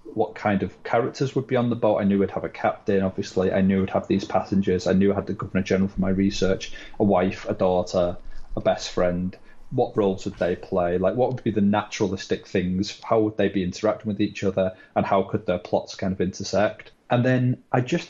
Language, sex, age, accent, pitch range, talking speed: English, male, 30-49, British, 95-110 Hz, 235 wpm